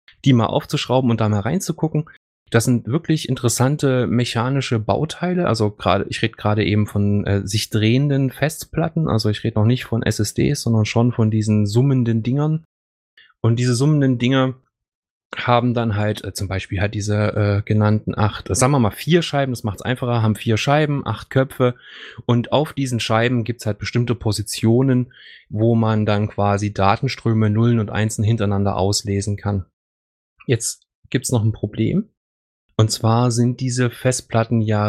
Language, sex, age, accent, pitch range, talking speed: German, male, 20-39, German, 105-135 Hz, 170 wpm